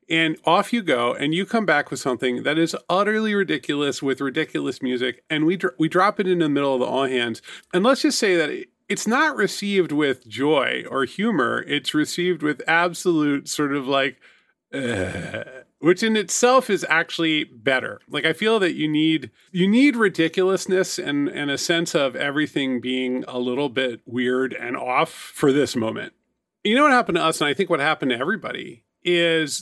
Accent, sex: American, male